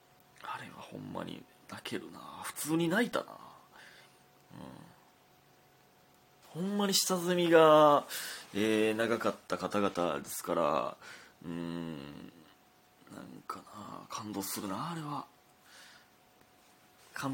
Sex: male